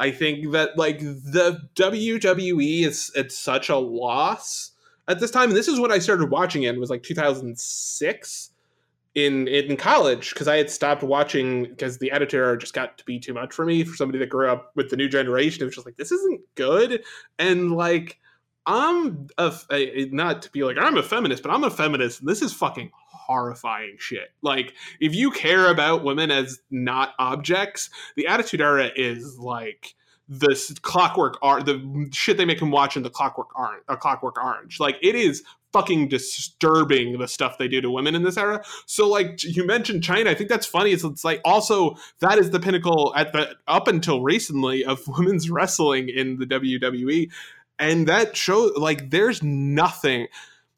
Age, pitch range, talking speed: 20-39, 135-185 Hz, 190 wpm